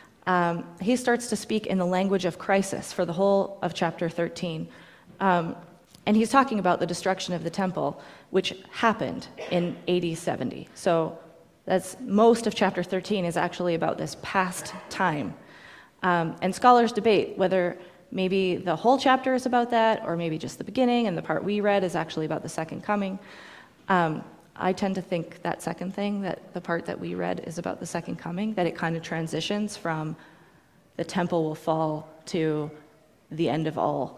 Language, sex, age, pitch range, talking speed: English, female, 30-49, 165-195 Hz, 185 wpm